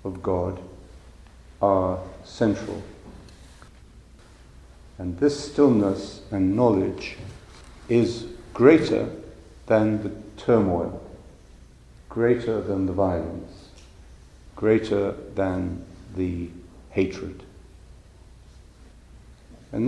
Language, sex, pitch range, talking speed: English, male, 85-110 Hz, 70 wpm